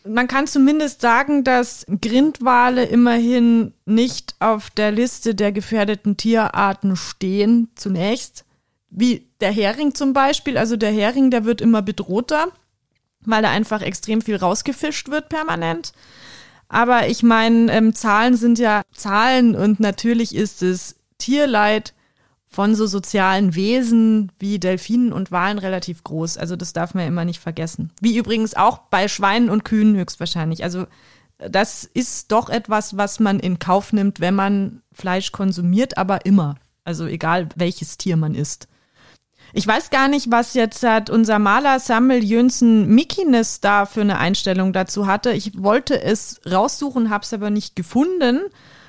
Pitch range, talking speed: 190-235 Hz, 150 wpm